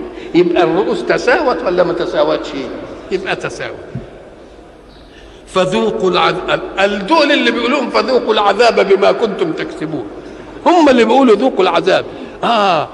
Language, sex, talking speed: Arabic, male, 110 wpm